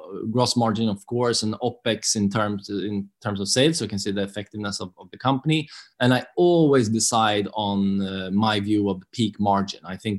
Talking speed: 210 wpm